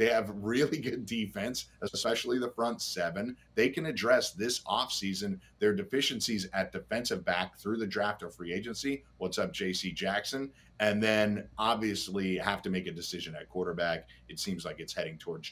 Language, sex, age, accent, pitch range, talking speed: English, male, 50-69, American, 80-105 Hz, 175 wpm